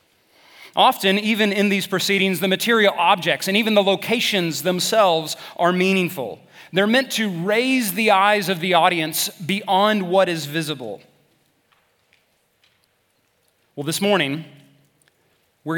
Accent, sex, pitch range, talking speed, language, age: American, male, 160-200 Hz, 120 wpm, English, 30-49